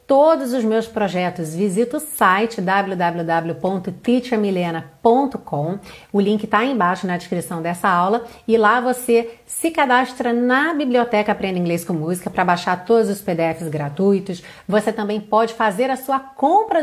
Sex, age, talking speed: female, 30-49, 145 wpm